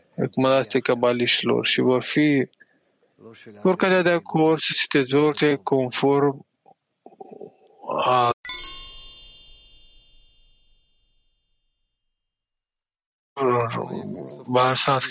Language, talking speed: English, 60 wpm